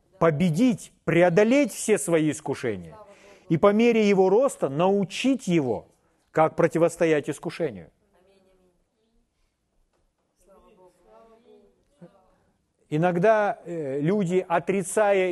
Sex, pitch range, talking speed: male, 165-215 Hz, 75 wpm